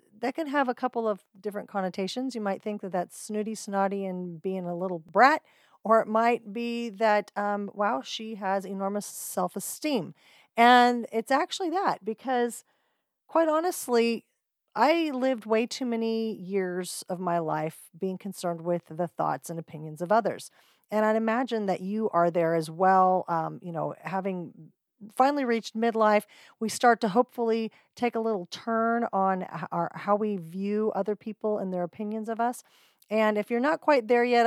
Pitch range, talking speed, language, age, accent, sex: 190-235 Hz, 170 wpm, English, 40-59, American, female